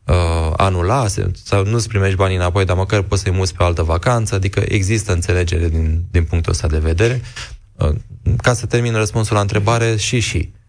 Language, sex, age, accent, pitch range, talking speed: Romanian, male, 20-39, native, 90-110 Hz, 175 wpm